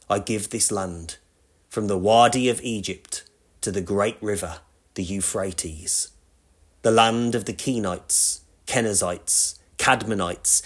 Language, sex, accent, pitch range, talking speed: English, male, British, 85-120 Hz, 125 wpm